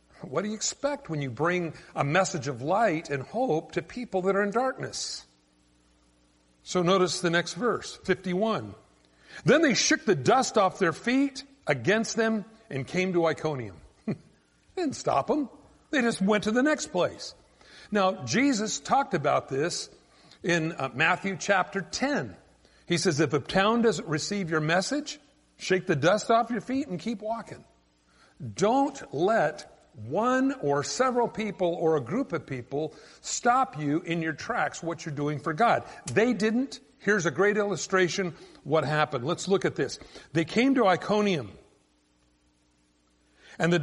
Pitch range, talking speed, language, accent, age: 145-215 Hz, 160 wpm, English, American, 50-69